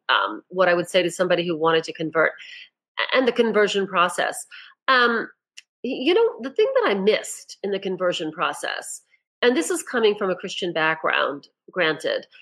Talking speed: 175 wpm